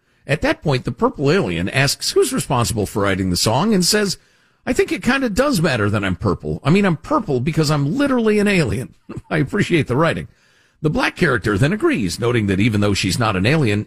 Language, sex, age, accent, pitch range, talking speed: English, male, 50-69, American, 105-165 Hz, 220 wpm